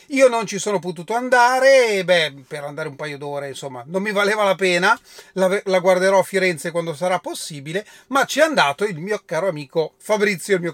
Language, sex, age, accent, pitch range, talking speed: Italian, male, 30-49, native, 155-205 Hz, 205 wpm